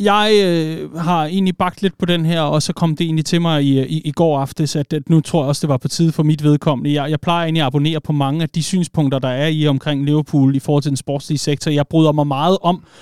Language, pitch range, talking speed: Danish, 140-165 Hz, 280 wpm